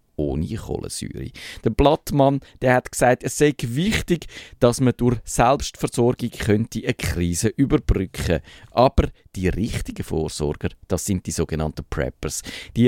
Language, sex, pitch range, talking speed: German, male, 90-120 Hz, 130 wpm